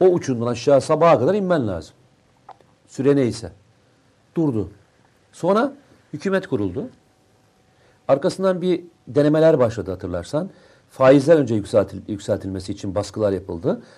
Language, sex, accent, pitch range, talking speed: Turkish, male, native, 110-155 Hz, 105 wpm